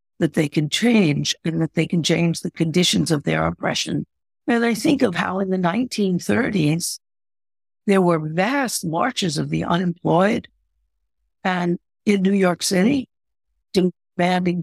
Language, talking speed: English, 145 wpm